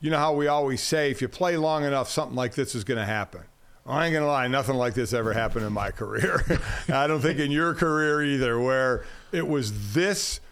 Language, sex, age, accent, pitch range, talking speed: English, male, 50-69, American, 120-155 Hz, 240 wpm